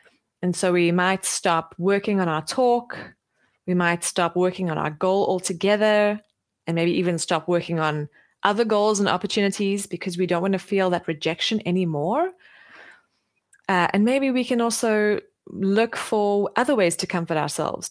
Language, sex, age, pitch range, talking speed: English, female, 20-39, 175-225 Hz, 165 wpm